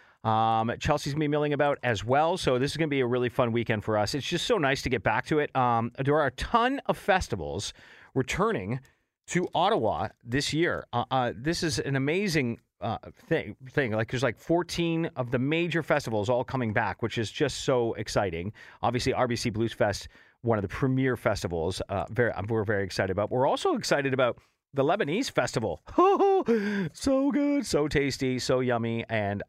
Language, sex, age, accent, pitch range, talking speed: English, male, 40-59, American, 120-170 Hz, 195 wpm